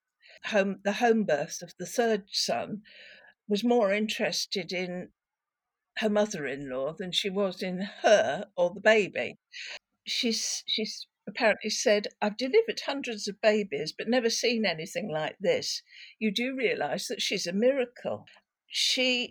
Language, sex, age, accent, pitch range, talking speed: English, female, 60-79, British, 180-250 Hz, 135 wpm